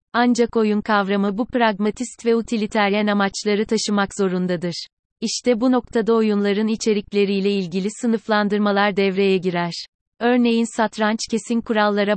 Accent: native